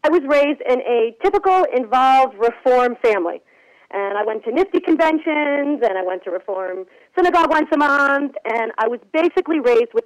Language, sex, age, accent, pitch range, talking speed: English, female, 40-59, American, 220-305 Hz, 180 wpm